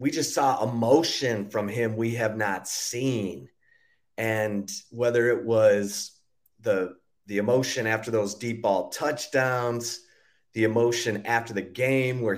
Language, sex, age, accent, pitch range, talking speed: English, male, 30-49, American, 105-125 Hz, 135 wpm